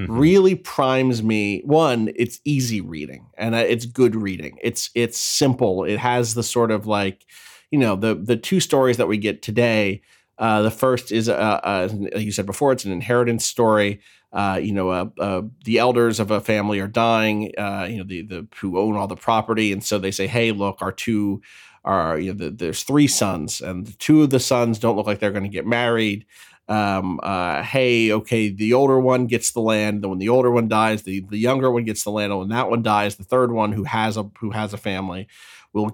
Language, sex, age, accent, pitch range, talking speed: English, male, 30-49, American, 100-120 Hz, 220 wpm